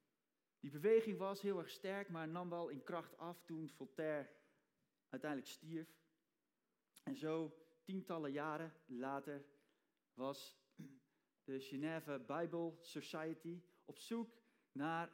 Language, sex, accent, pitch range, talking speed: Dutch, male, Dutch, 150-185 Hz, 115 wpm